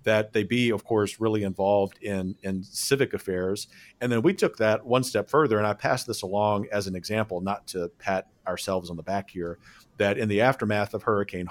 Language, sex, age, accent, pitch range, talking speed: English, male, 40-59, American, 100-125 Hz, 215 wpm